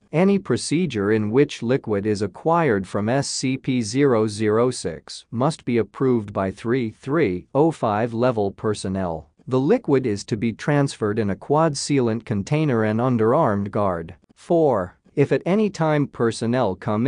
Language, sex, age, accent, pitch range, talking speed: English, male, 40-59, American, 105-135 Hz, 130 wpm